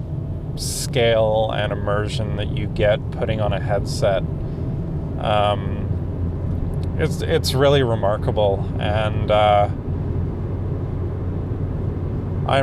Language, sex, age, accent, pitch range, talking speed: English, male, 30-49, American, 105-130 Hz, 80 wpm